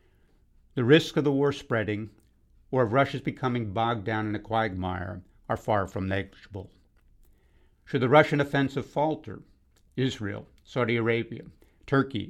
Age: 60-79